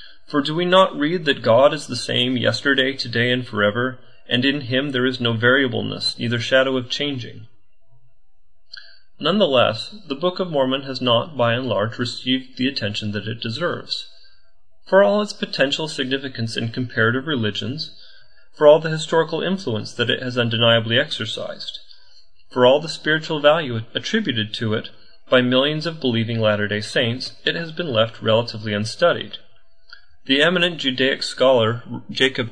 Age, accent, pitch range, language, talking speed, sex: 30-49, American, 110-145 Hz, English, 155 wpm, male